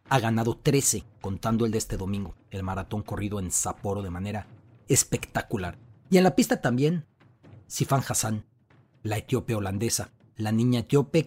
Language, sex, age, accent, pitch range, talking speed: English, male, 40-59, Mexican, 105-130 Hz, 155 wpm